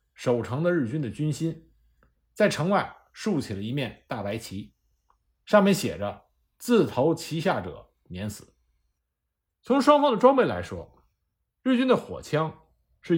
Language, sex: Chinese, male